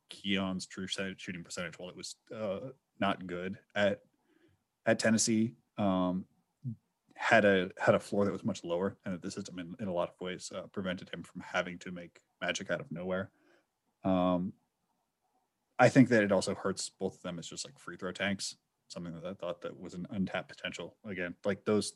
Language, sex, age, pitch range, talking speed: English, male, 20-39, 90-105 Hz, 195 wpm